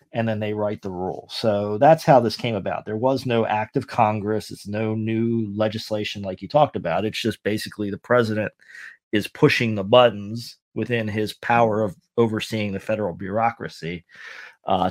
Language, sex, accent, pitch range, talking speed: English, male, American, 95-115 Hz, 175 wpm